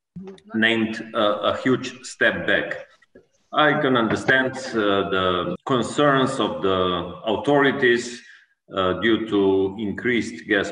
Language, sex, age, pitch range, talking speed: Ukrainian, male, 40-59, 100-125 Hz, 110 wpm